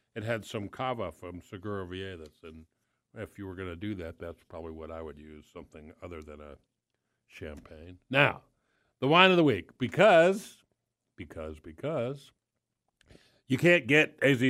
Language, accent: English, American